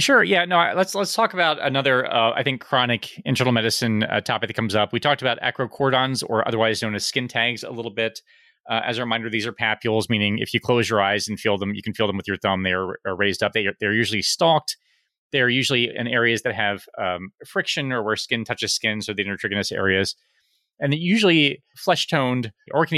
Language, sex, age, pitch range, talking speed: English, male, 30-49, 105-130 Hz, 230 wpm